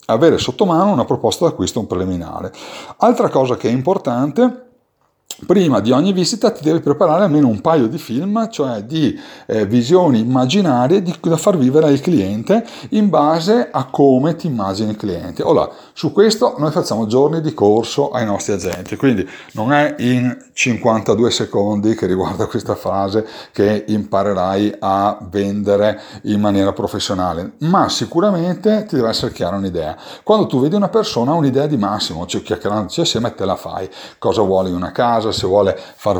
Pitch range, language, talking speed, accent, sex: 105-155 Hz, Italian, 170 wpm, native, male